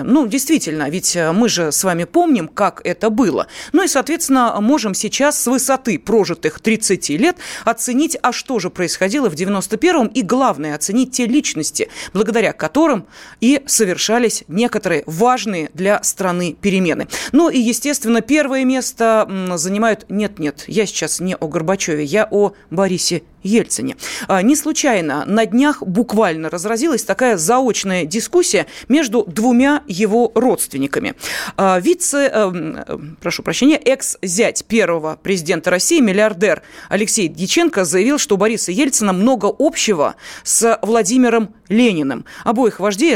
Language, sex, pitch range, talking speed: Russian, female, 190-260 Hz, 130 wpm